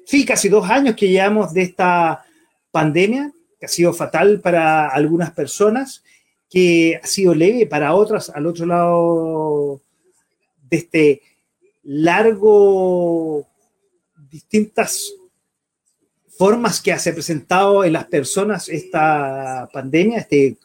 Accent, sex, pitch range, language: Argentinian, male, 165-240 Hz, Spanish